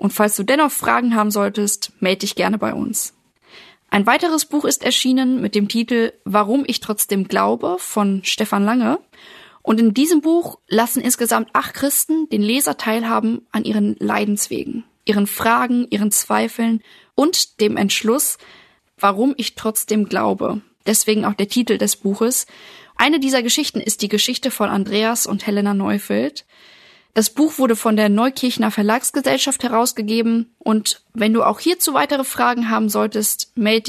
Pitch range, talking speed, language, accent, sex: 210-245 Hz, 155 wpm, German, German, female